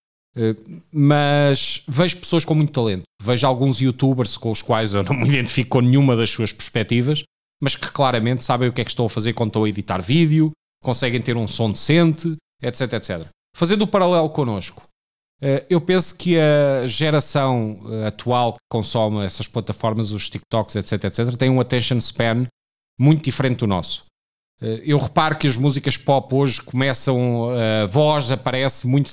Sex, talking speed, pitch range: male, 170 wpm, 115-140 Hz